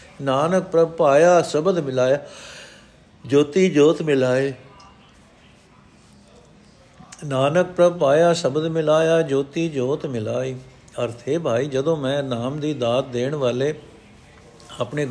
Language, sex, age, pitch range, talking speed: Punjabi, male, 60-79, 130-165 Hz, 105 wpm